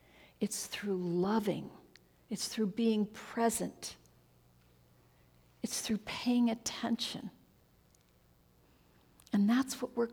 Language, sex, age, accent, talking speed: English, female, 60-79, American, 90 wpm